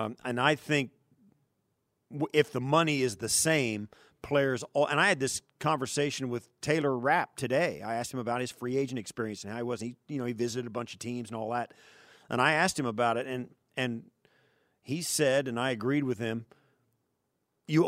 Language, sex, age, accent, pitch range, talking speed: English, male, 40-59, American, 120-140 Hz, 205 wpm